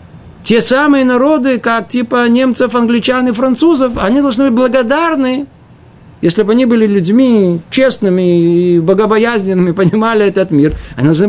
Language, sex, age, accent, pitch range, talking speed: Russian, male, 50-69, native, 155-220 Hz, 140 wpm